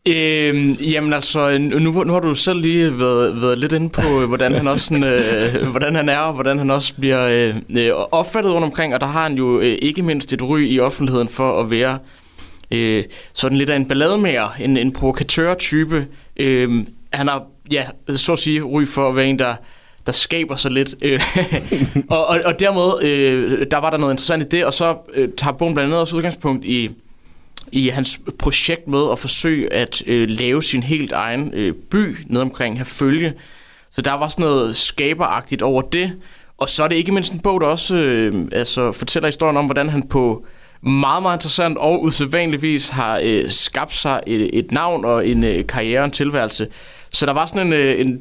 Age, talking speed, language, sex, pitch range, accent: 20-39, 205 wpm, Danish, male, 130-160 Hz, native